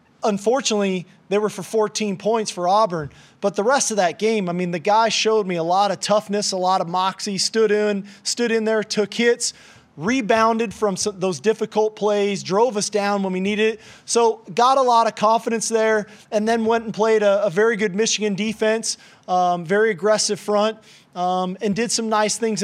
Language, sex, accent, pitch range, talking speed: English, male, American, 190-225 Hz, 195 wpm